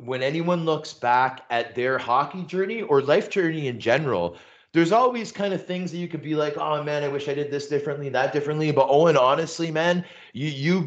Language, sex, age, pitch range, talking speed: English, male, 30-49, 135-175 Hz, 220 wpm